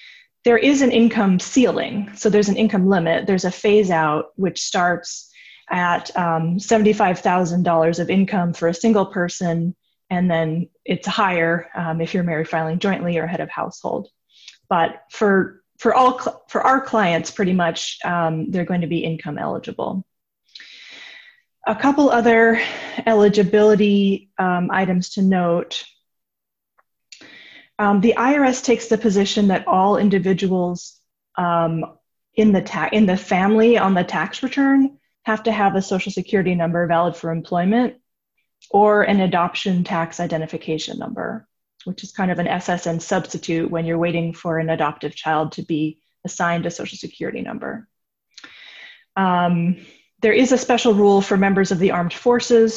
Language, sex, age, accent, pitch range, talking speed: English, female, 20-39, American, 170-220 Hz, 145 wpm